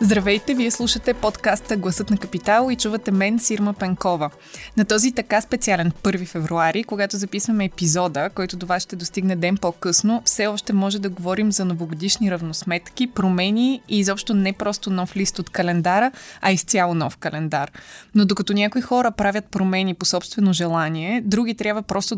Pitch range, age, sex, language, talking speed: 180-215 Hz, 20-39, female, Bulgarian, 160 wpm